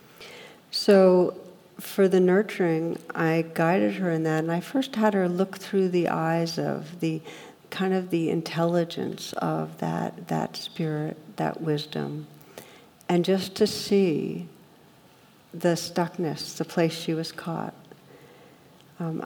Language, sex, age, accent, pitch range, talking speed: English, female, 60-79, American, 165-190 Hz, 130 wpm